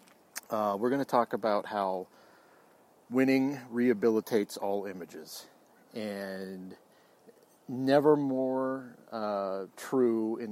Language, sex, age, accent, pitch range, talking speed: English, male, 40-59, American, 105-135 Hz, 95 wpm